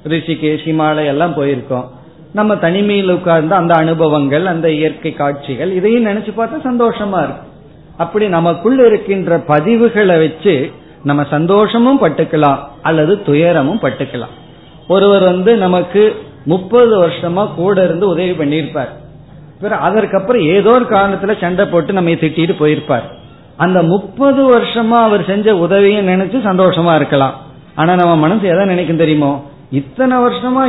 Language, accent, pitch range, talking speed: Tamil, native, 145-195 Hz, 120 wpm